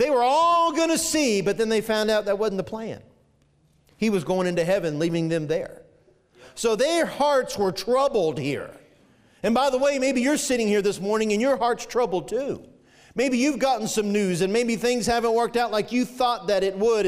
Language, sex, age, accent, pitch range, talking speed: English, male, 40-59, American, 150-230 Hz, 210 wpm